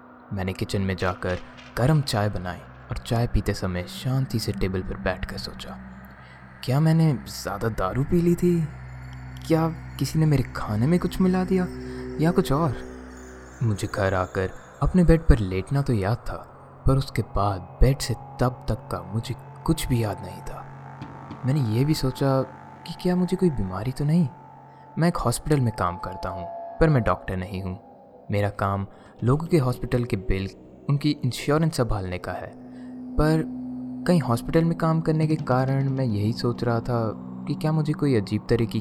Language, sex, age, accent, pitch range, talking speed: Hindi, male, 20-39, native, 95-145 Hz, 175 wpm